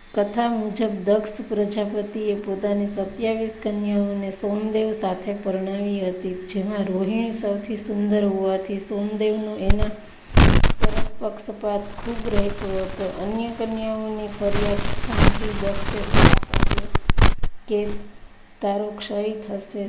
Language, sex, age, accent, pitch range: Gujarati, female, 20-39, native, 200-220 Hz